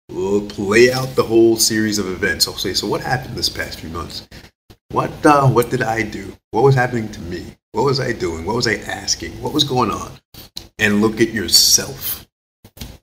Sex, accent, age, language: male, American, 30-49, English